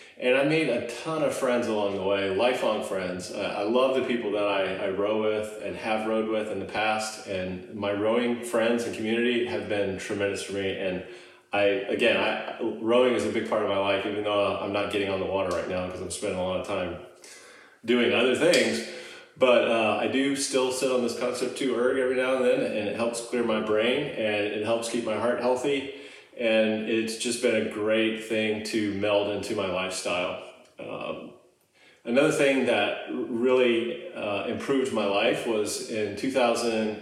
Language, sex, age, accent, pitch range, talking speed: English, male, 30-49, American, 100-125 Hz, 200 wpm